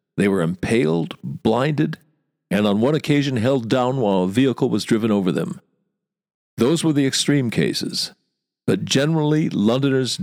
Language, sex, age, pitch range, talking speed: English, male, 50-69, 105-140 Hz, 145 wpm